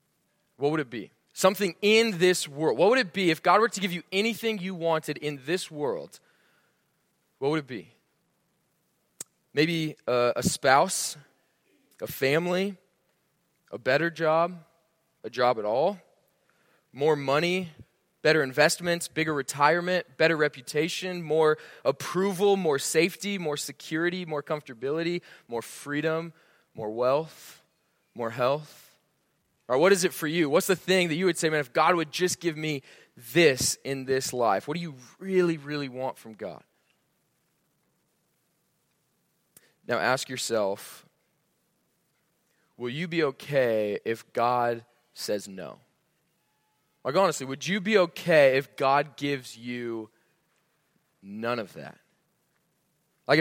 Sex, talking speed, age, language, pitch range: male, 135 wpm, 20-39, English, 135-175 Hz